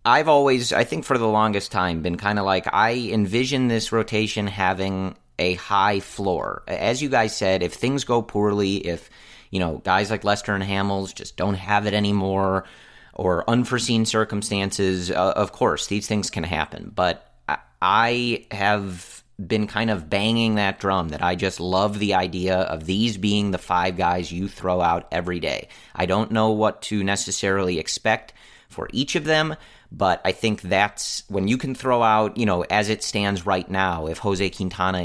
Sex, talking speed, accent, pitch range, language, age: male, 185 wpm, American, 95-110 Hz, English, 30-49